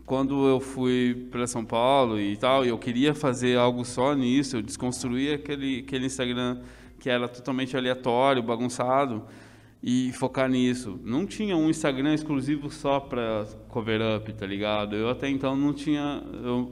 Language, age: Portuguese, 20-39